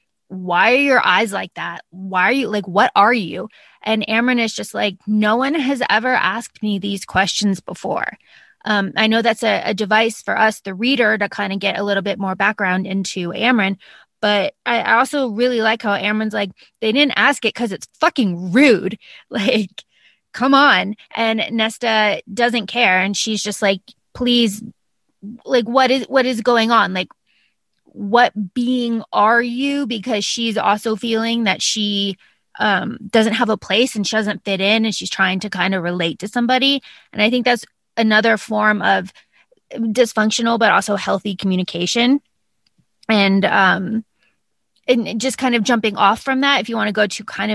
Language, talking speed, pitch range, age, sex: English, 180 wpm, 200-240 Hz, 20-39, female